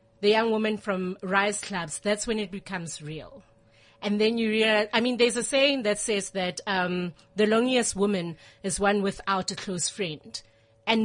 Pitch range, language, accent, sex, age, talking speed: 185-235 Hz, English, South African, female, 30-49, 180 wpm